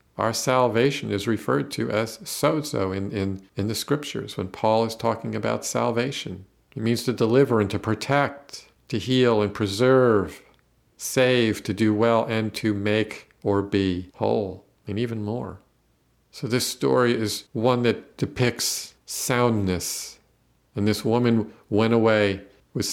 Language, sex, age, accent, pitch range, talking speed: English, male, 50-69, American, 100-120 Hz, 145 wpm